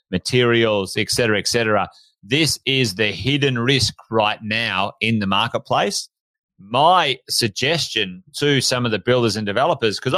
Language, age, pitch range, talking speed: English, 30-49, 110-135 Hz, 145 wpm